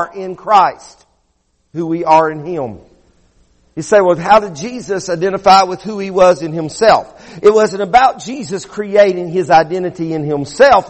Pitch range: 175-250 Hz